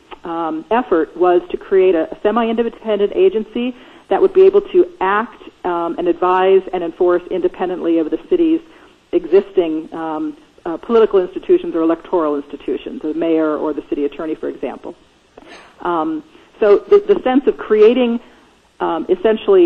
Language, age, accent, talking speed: English, 40-59, American, 145 wpm